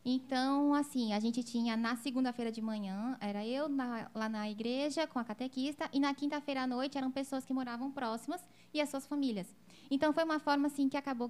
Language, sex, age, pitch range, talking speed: Portuguese, female, 10-29, 220-280 Hz, 200 wpm